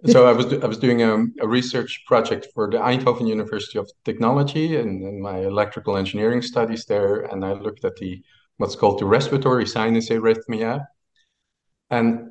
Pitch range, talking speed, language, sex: 105-120 Hz, 175 wpm, English, male